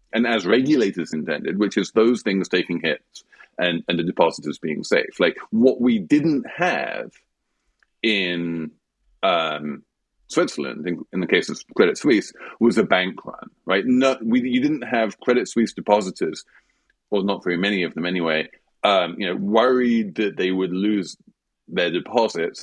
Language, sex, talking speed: English, male, 165 wpm